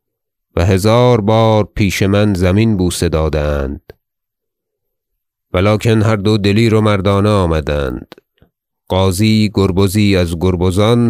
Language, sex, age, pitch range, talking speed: Persian, male, 30-49, 90-105 Hz, 105 wpm